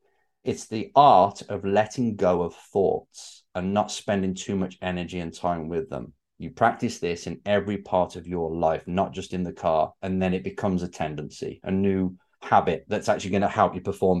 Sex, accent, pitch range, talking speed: male, British, 95-130 Hz, 205 wpm